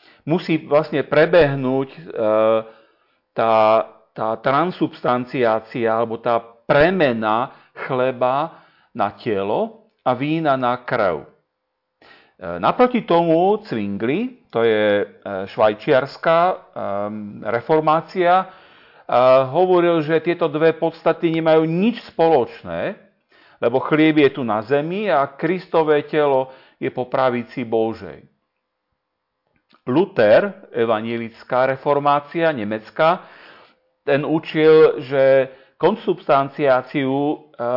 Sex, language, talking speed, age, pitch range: male, Slovak, 85 wpm, 40-59, 115-155 Hz